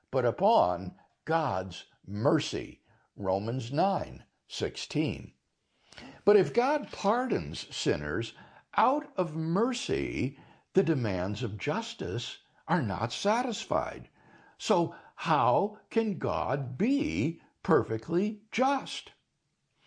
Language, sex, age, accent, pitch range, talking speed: Swedish, male, 60-79, American, 165-245 Hz, 85 wpm